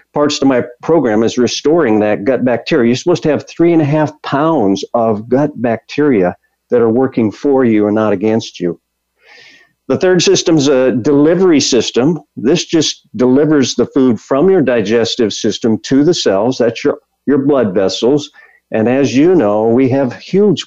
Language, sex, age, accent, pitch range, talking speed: English, male, 50-69, American, 110-145 Hz, 175 wpm